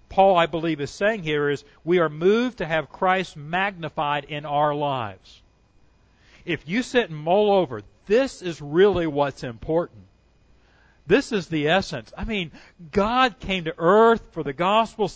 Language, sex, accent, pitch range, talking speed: English, male, American, 120-175 Hz, 160 wpm